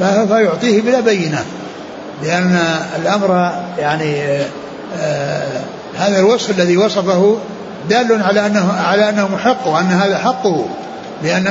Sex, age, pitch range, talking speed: male, 60-79, 175-210 Hz, 105 wpm